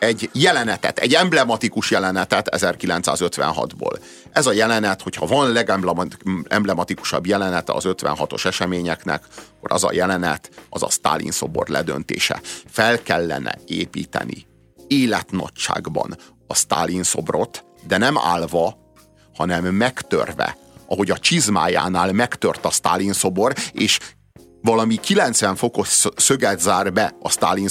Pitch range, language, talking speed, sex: 95-120 Hz, Hungarian, 115 wpm, male